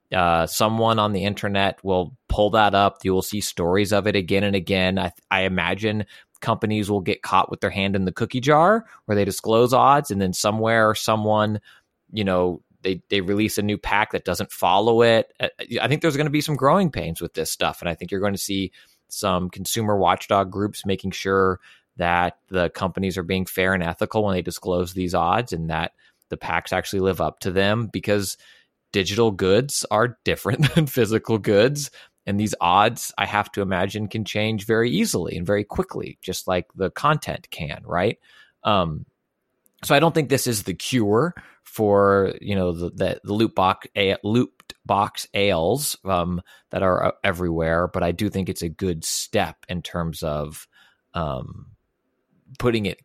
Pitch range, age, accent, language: 90-110 Hz, 20-39, American, English